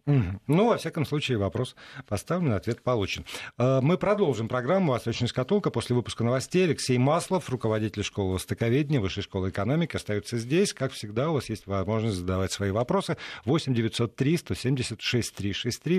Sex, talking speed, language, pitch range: male, 175 wpm, Russian, 110-145 Hz